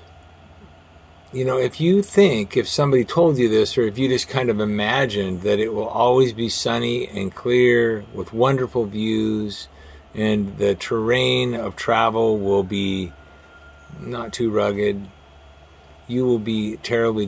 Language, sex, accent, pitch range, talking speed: English, male, American, 85-130 Hz, 145 wpm